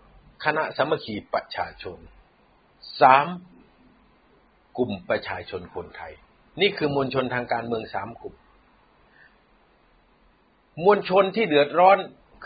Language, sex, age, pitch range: Thai, male, 60-79, 115-185 Hz